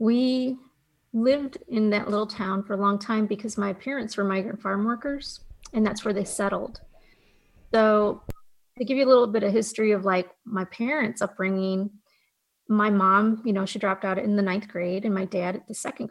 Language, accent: English, American